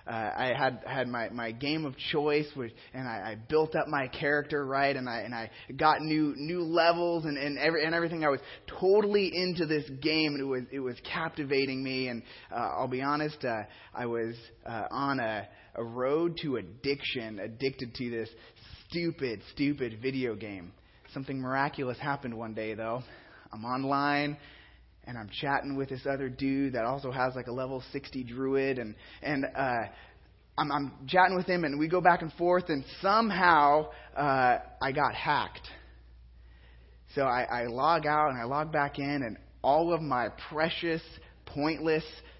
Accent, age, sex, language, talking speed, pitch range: American, 20-39, male, English, 180 wpm, 120-155 Hz